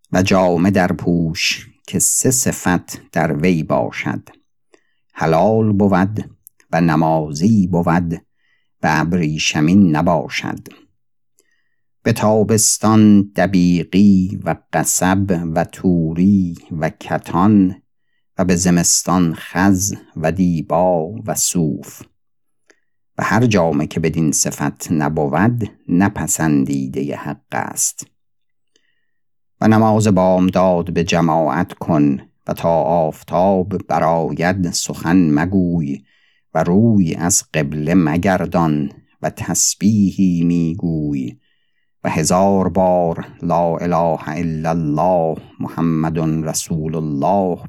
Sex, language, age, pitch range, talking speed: male, Persian, 50-69, 80-95 Hz, 95 wpm